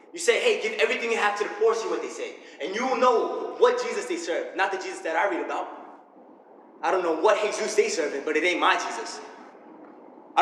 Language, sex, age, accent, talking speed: English, male, 20-39, American, 240 wpm